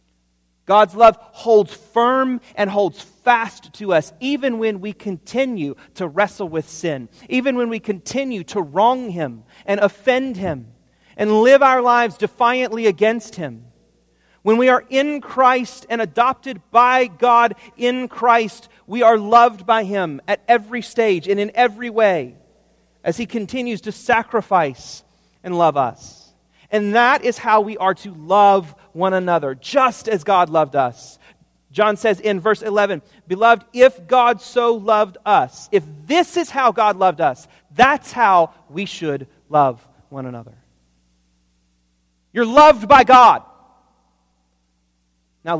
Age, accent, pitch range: 40-59, American, 150-235 Hz